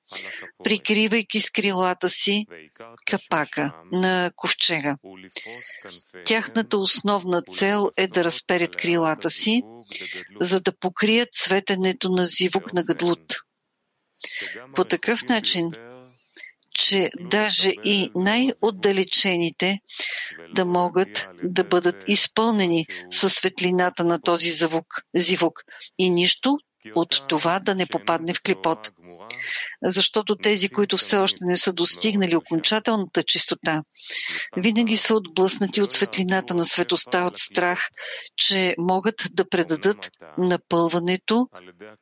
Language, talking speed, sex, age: English, 105 wpm, female, 50-69